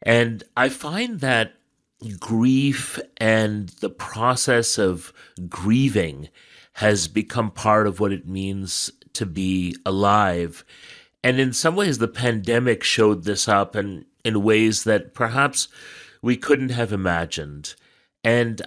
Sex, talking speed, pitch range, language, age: male, 125 wpm, 100-130 Hz, English, 30-49